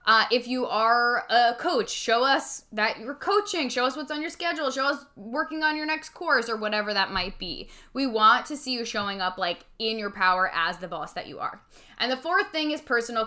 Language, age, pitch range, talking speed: English, 10-29, 205-260 Hz, 235 wpm